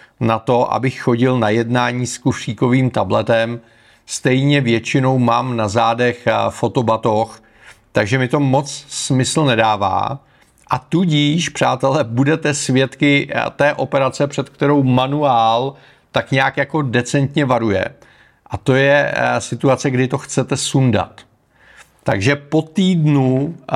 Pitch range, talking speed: 115-145 Hz, 120 wpm